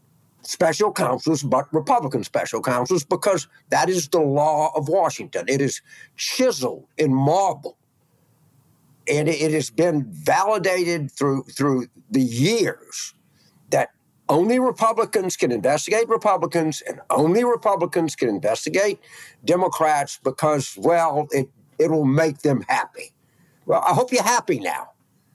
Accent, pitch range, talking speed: American, 140-180 Hz, 125 wpm